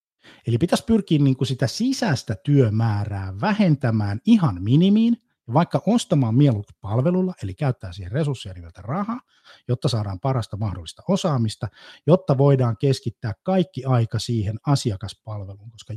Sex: male